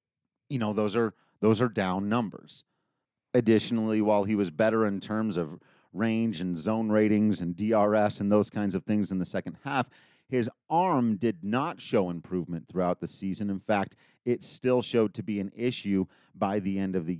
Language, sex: English, male